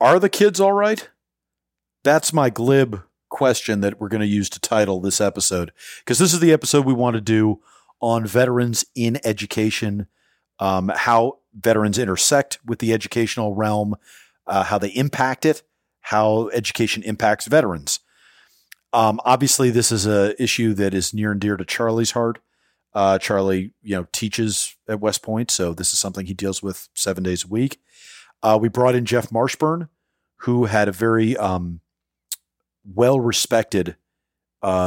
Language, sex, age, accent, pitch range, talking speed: English, male, 40-59, American, 95-120 Hz, 160 wpm